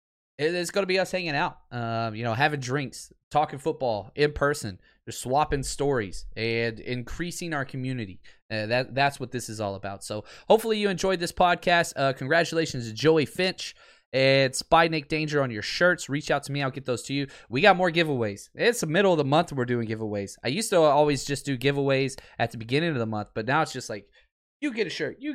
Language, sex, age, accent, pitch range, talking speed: English, male, 20-39, American, 125-175 Hz, 225 wpm